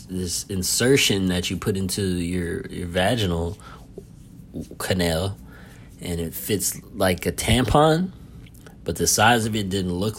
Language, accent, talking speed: English, American, 135 wpm